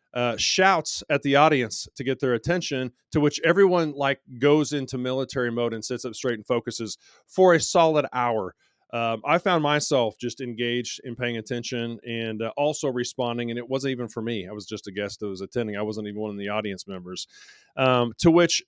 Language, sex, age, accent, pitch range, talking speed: English, male, 30-49, American, 115-145 Hz, 210 wpm